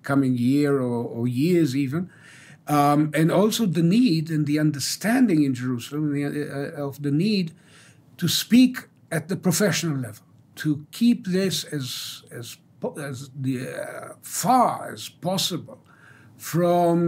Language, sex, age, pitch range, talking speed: English, male, 60-79, 130-170 Hz, 130 wpm